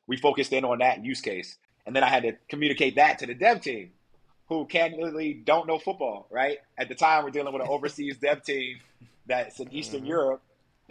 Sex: male